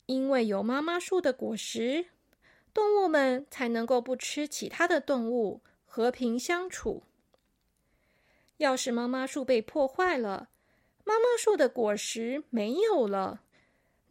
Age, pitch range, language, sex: 20-39, 245-325 Hz, Chinese, female